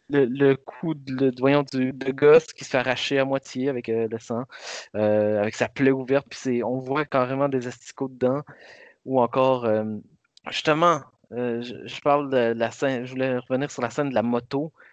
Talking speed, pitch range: 210 wpm, 130-165 Hz